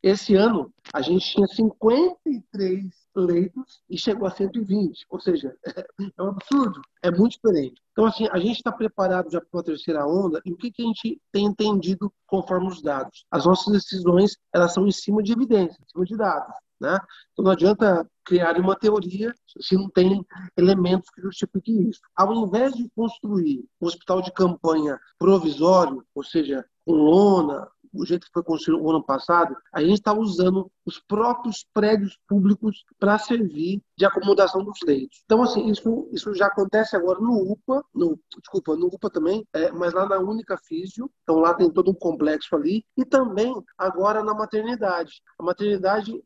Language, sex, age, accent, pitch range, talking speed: Portuguese, male, 50-69, Brazilian, 180-215 Hz, 175 wpm